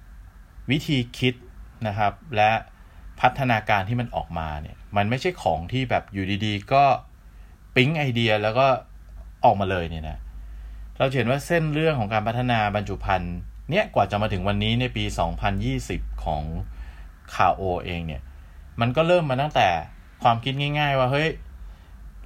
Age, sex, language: 20-39, male, Thai